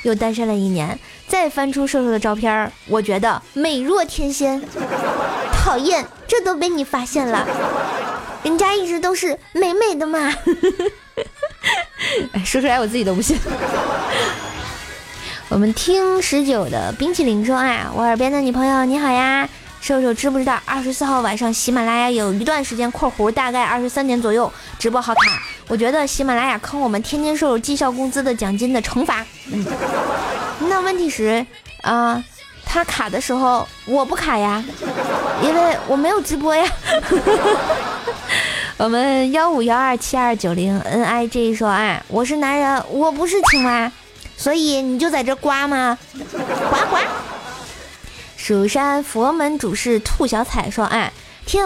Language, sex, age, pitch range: Chinese, female, 20-39, 235-335 Hz